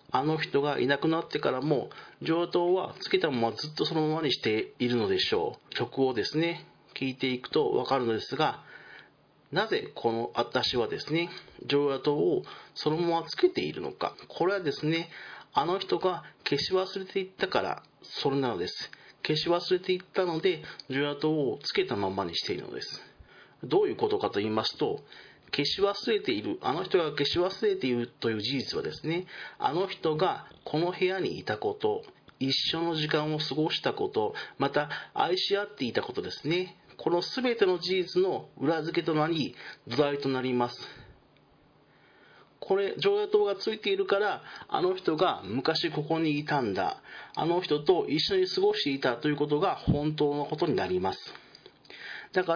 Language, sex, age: Japanese, male, 40-59